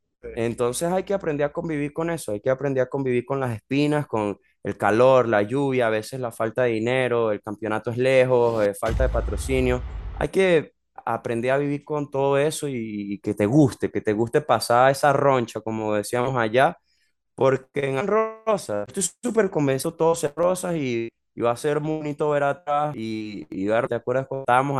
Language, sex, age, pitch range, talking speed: Spanish, male, 20-39, 110-140 Hz, 190 wpm